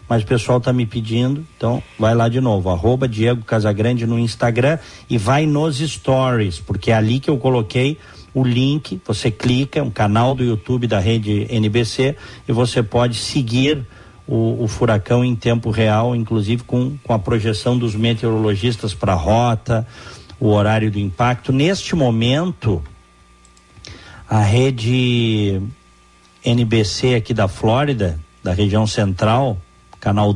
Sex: male